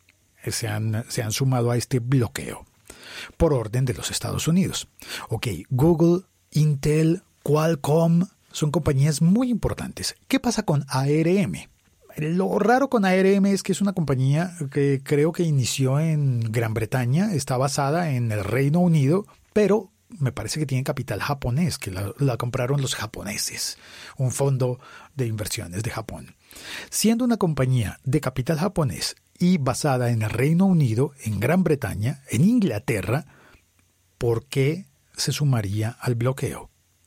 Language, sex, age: Spanish, male, 40-59